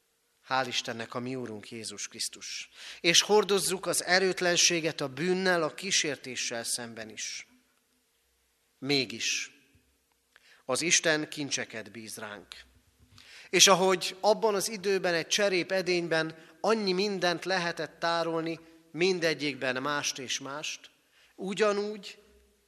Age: 30-49